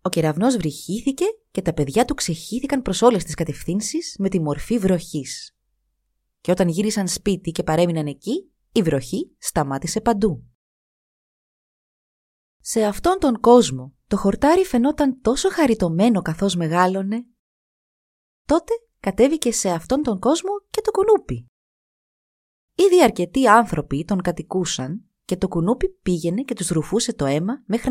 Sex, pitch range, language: female, 160-255 Hz, Greek